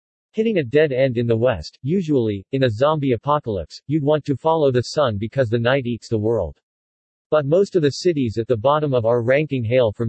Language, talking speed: English, 220 wpm